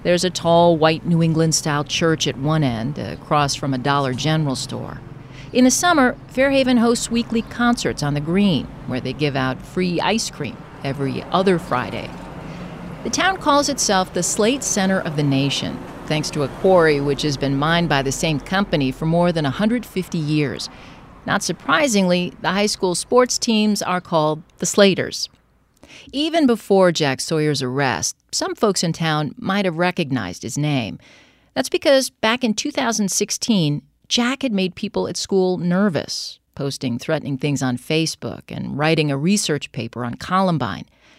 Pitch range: 150-210 Hz